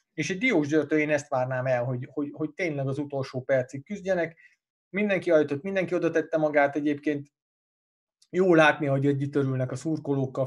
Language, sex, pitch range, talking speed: Hungarian, male, 135-165 Hz, 170 wpm